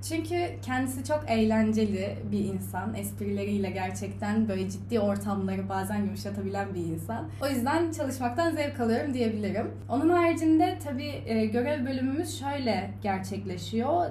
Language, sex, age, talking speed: English, female, 10-29, 120 wpm